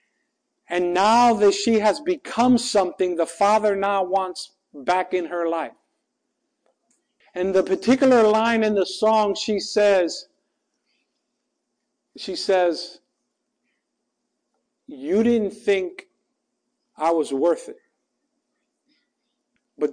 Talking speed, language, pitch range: 100 wpm, English, 180-235 Hz